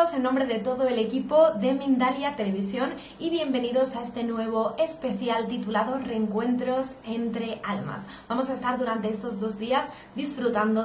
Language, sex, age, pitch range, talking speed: Spanish, female, 20-39, 215-260 Hz, 150 wpm